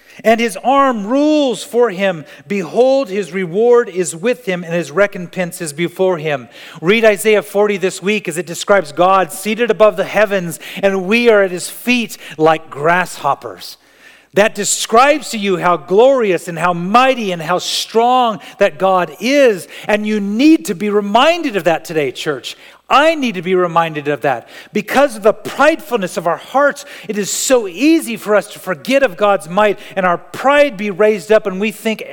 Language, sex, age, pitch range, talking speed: English, male, 40-59, 170-220 Hz, 185 wpm